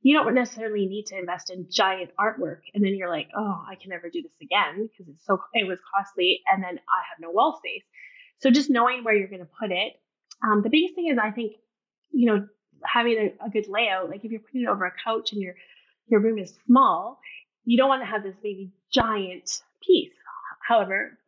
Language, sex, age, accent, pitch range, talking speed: English, female, 10-29, American, 190-250 Hz, 225 wpm